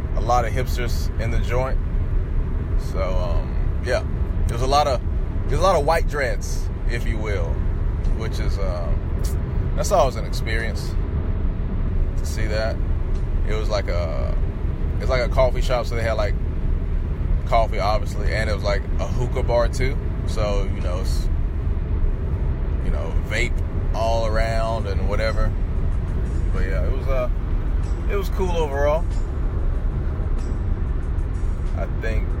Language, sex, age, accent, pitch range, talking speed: English, male, 20-39, American, 75-95 Hz, 145 wpm